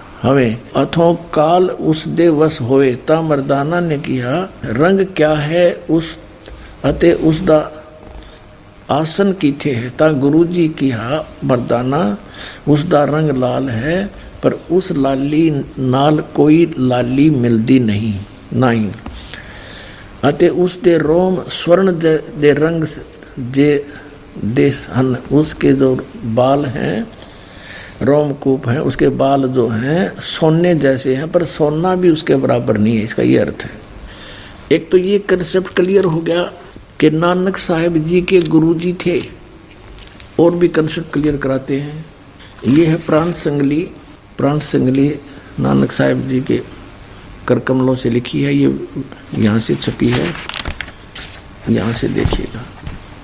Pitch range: 120-160 Hz